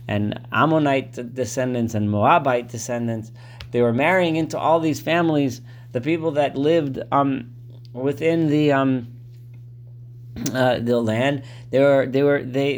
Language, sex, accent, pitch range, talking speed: English, male, American, 120-150 Hz, 135 wpm